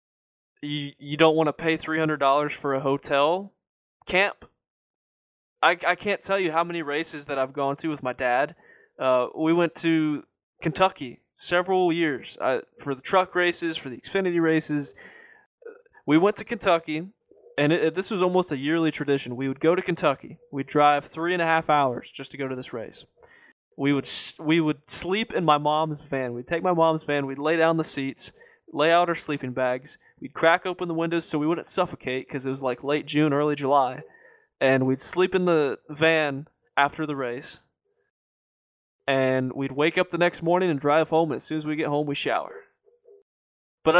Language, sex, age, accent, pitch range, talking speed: English, male, 20-39, American, 140-185 Hz, 195 wpm